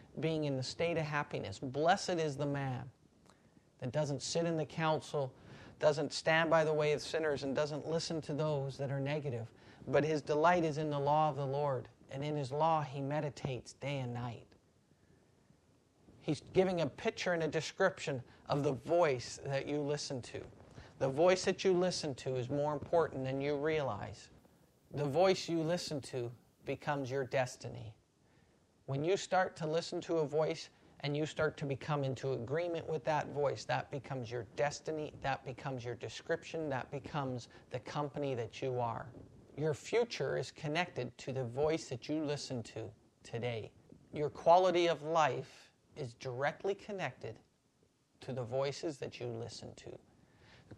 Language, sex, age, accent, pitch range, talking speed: English, male, 40-59, American, 130-155 Hz, 170 wpm